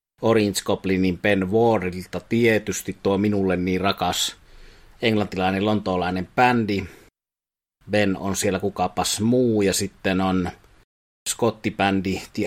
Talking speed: 105 wpm